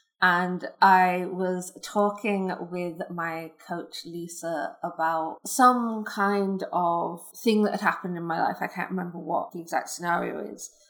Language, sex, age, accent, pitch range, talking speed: English, female, 20-39, British, 175-205 Hz, 150 wpm